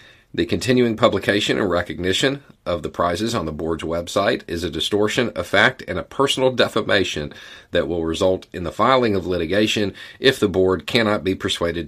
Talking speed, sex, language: 175 wpm, male, English